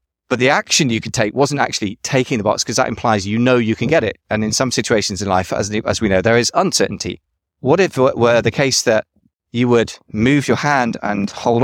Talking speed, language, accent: 245 wpm, English, British